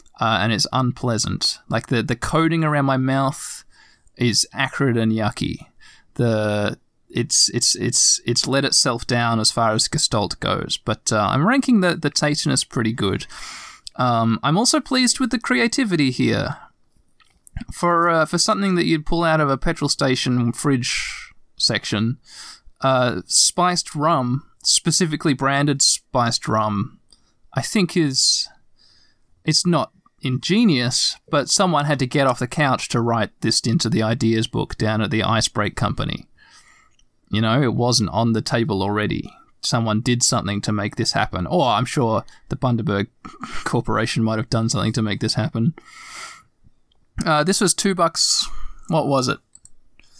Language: English